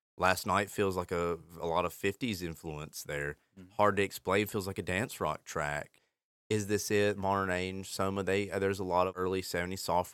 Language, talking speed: English, 195 wpm